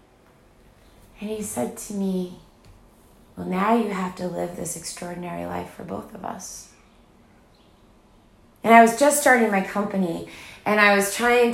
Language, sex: English, female